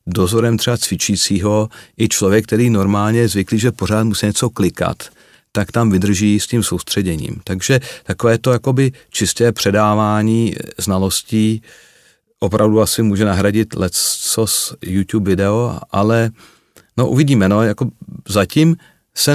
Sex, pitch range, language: male, 100-120 Hz, Czech